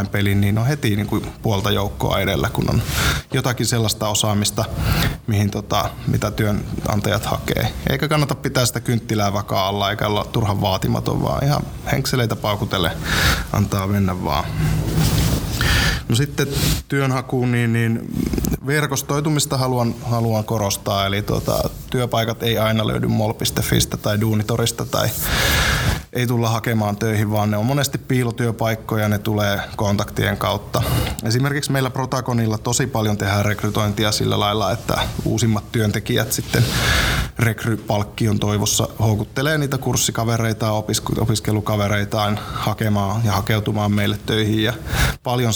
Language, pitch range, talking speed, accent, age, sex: Finnish, 105-125 Hz, 130 wpm, native, 20-39, male